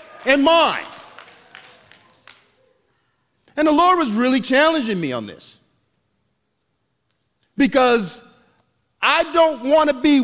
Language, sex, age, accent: English, male, 50-69, American